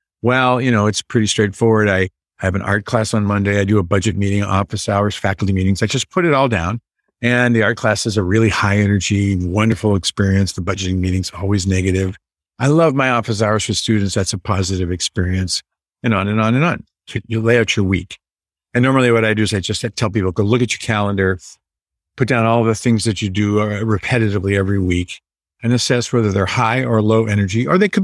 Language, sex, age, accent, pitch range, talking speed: English, male, 50-69, American, 95-120 Hz, 225 wpm